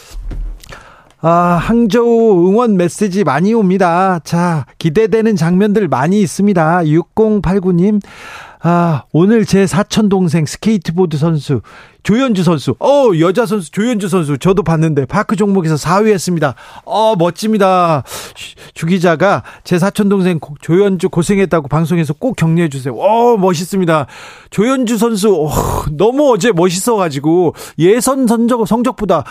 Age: 40-59